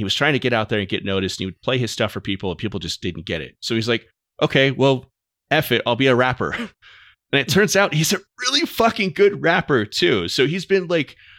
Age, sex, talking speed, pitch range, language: 30-49, male, 265 wpm, 100-130 Hz, English